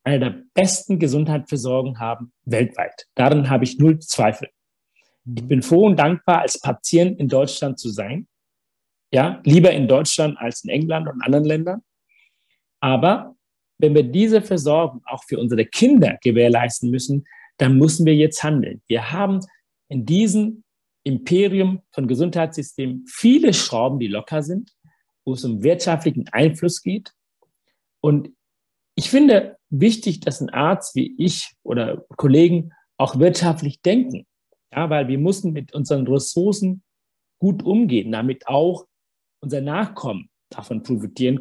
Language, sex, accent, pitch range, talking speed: German, male, German, 130-175 Hz, 140 wpm